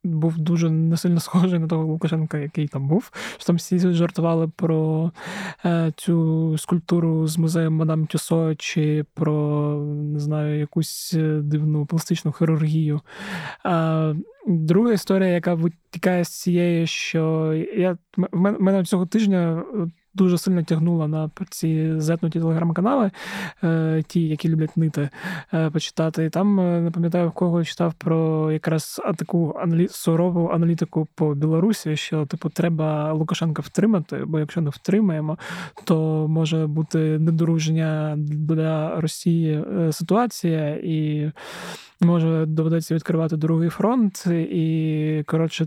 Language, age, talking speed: Ukrainian, 20-39, 125 wpm